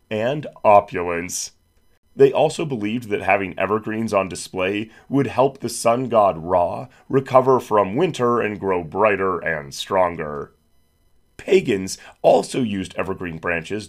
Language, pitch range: English, 85-120 Hz